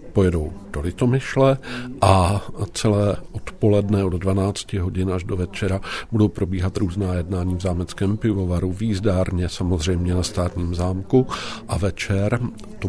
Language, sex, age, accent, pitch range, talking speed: Czech, male, 50-69, native, 90-105 Hz, 125 wpm